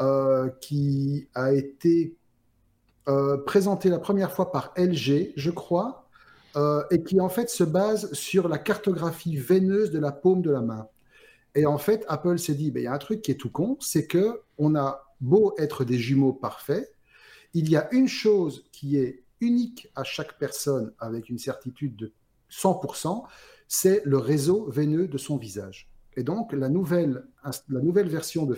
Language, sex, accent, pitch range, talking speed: French, male, French, 130-180 Hz, 175 wpm